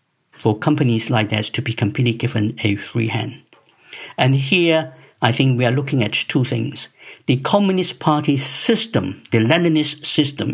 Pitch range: 110-145 Hz